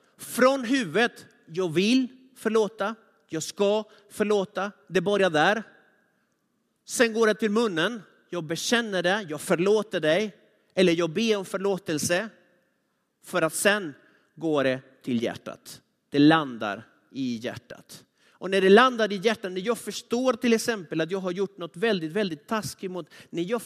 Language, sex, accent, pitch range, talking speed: Swedish, male, native, 180-225 Hz, 150 wpm